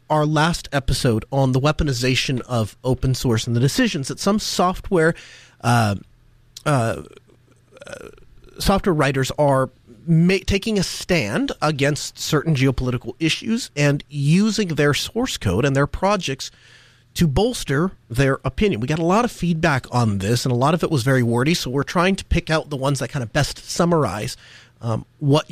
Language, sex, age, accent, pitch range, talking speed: English, male, 40-59, American, 130-185 Hz, 165 wpm